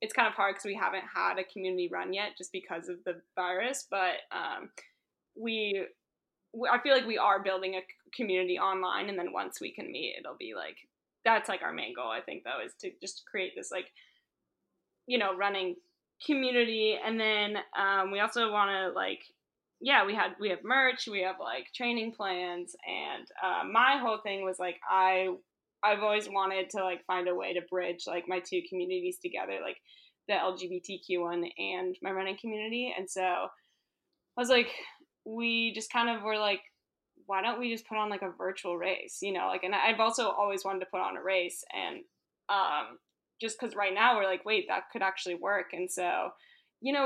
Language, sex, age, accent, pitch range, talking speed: English, female, 10-29, American, 185-230 Hz, 200 wpm